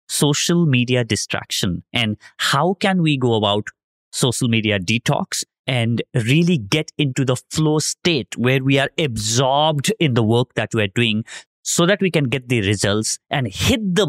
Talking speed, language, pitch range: 165 wpm, English, 115-150 Hz